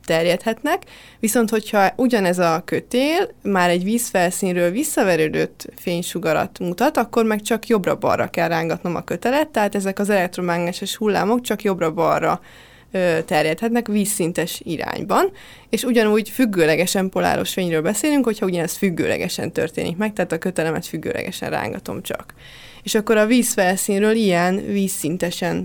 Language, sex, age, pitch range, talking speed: Hungarian, female, 20-39, 175-220 Hz, 125 wpm